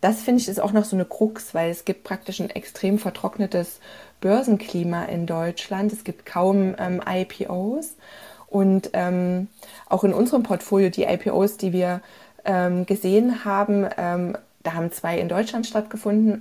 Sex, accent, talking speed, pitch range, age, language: female, German, 160 wpm, 180-210 Hz, 20-39, German